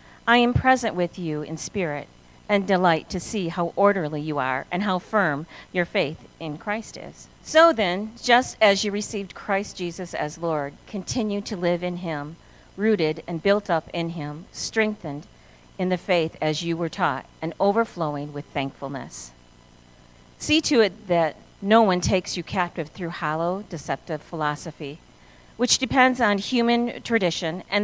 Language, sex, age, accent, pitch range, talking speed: English, female, 50-69, American, 150-205 Hz, 160 wpm